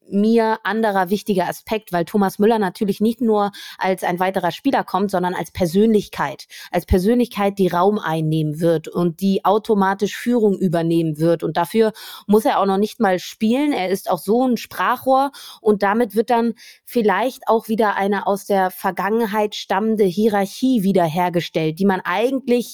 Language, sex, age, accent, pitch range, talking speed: German, female, 20-39, German, 185-230 Hz, 165 wpm